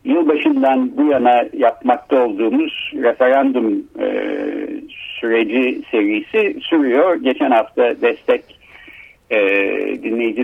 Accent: native